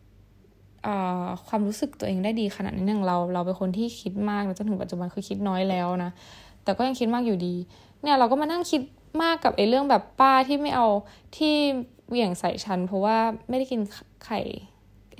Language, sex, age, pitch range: Thai, female, 10-29, 180-225 Hz